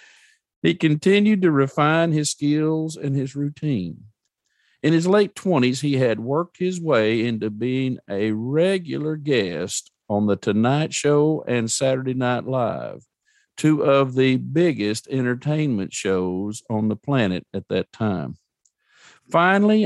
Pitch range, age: 125-180 Hz, 50-69